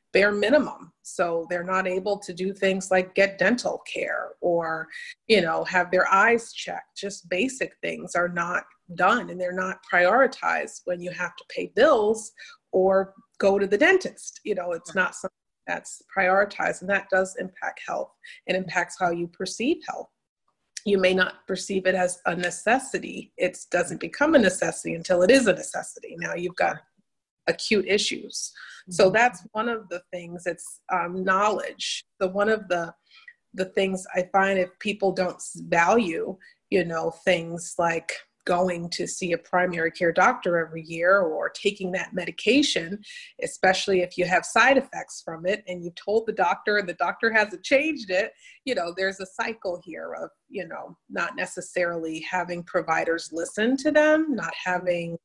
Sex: female